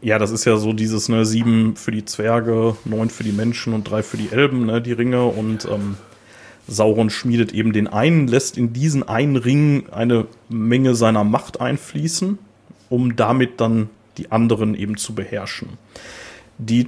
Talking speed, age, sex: 175 wpm, 30-49, male